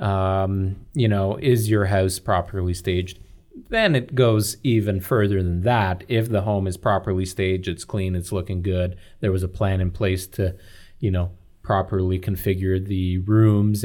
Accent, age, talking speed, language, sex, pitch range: American, 30-49, 170 wpm, English, male, 95-115 Hz